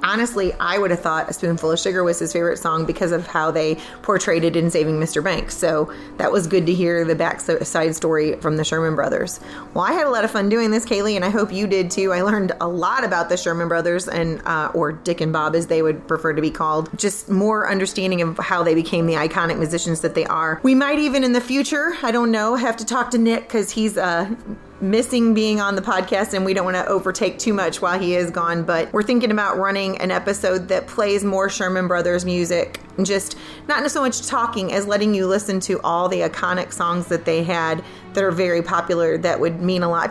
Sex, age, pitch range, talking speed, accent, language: female, 30-49, 165-200 Hz, 240 wpm, American, English